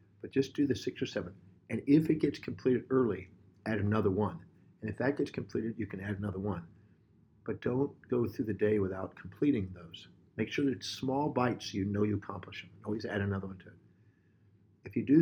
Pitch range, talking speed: 95-115 Hz, 220 wpm